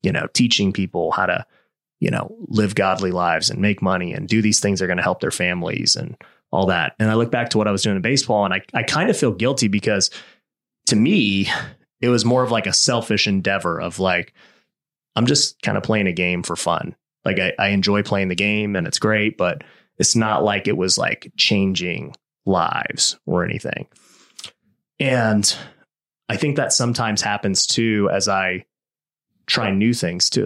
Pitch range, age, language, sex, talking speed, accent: 95-115 Hz, 30-49, English, male, 200 wpm, American